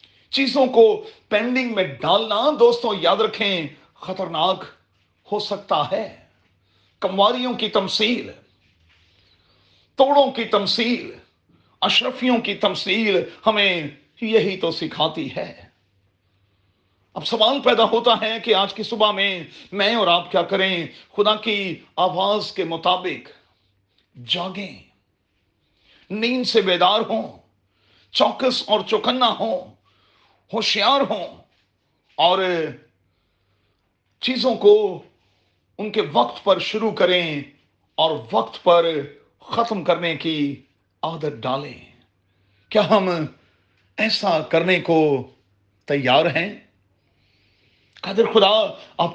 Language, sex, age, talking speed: Urdu, male, 40-59, 105 wpm